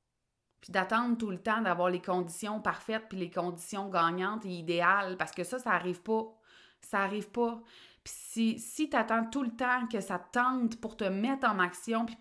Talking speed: 195 wpm